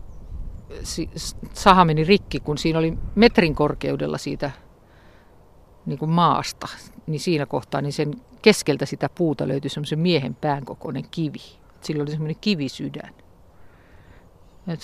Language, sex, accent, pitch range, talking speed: Finnish, female, native, 140-170 Hz, 120 wpm